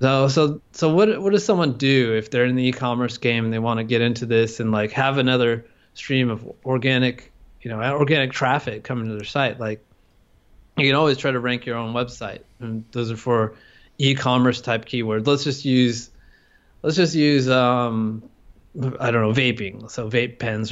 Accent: American